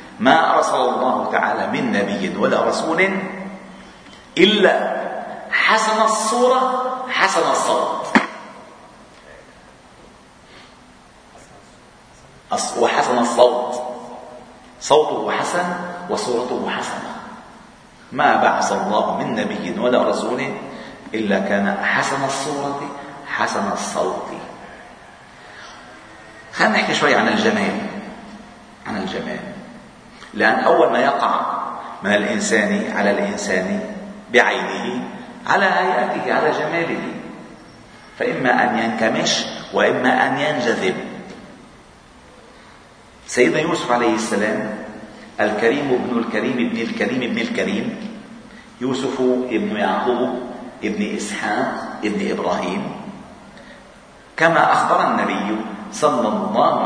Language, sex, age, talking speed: Arabic, male, 40-59, 85 wpm